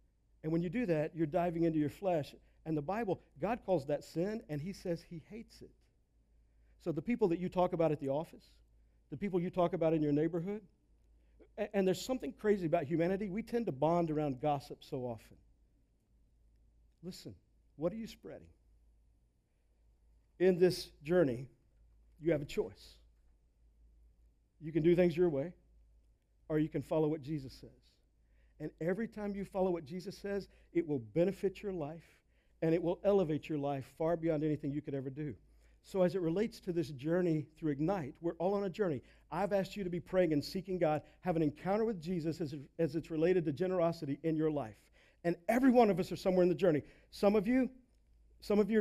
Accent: American